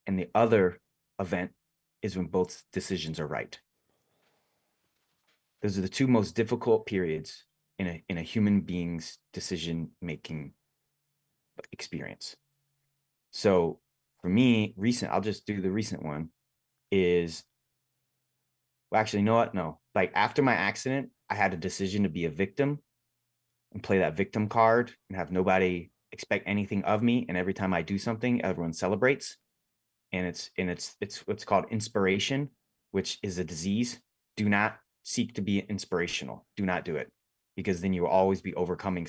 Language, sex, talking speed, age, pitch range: English, male, 160 wpm, 30-49, 90-115 Hz